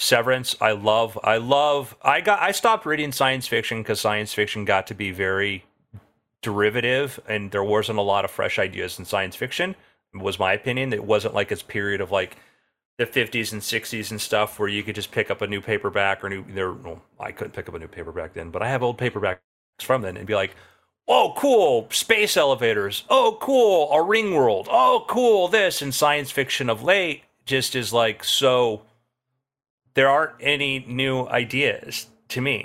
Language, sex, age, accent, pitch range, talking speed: English, male, 30-49, American, 110-140 Hz, 195 wpm